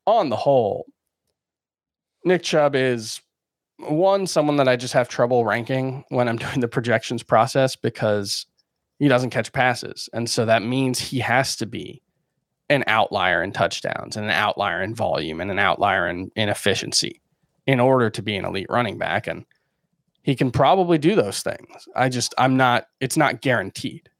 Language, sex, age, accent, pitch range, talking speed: English, male, 20-39, American, 115-145 Hz, 175 wpm